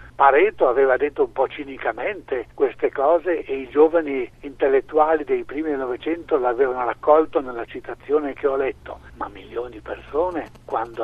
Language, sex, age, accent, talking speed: Italian, male, 60-79, native, 145 wpm